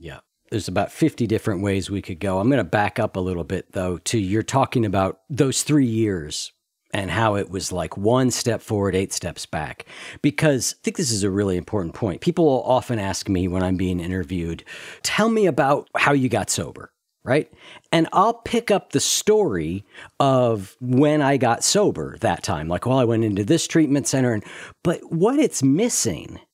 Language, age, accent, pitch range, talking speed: English, 50-69, American, 105-150 Hz, 195 wpm